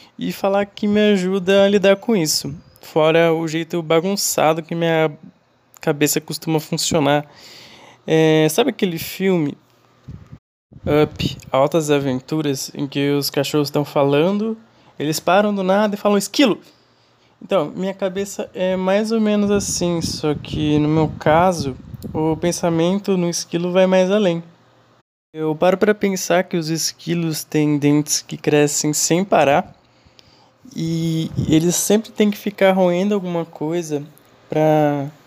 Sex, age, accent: male, 20-39, Brazilian